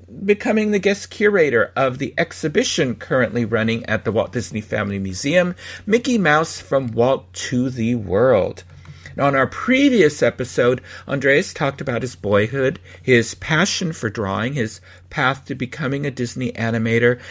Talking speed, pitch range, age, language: 145 wpm, 105-165 Hz, 50-69, English